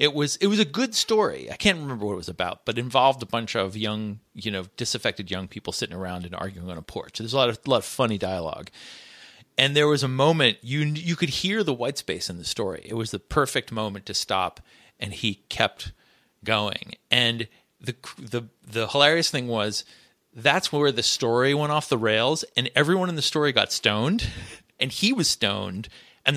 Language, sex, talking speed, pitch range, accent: English, male, 215 wpm, 105-145 Hz, American